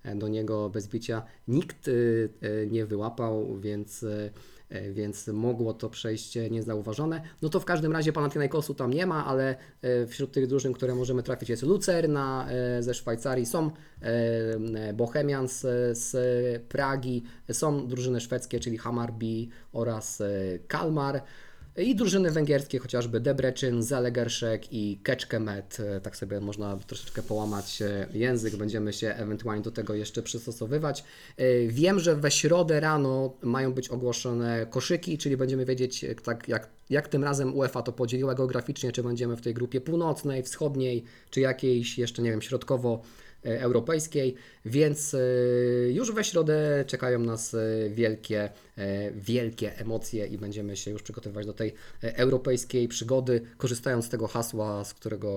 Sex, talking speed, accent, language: male, 145 wpm, native, Polish